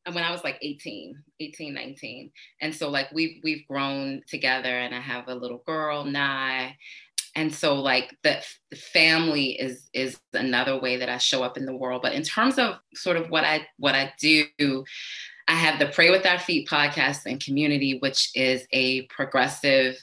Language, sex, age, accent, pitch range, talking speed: English, female, 20-39, American, 130-150 Hz, 190 wpm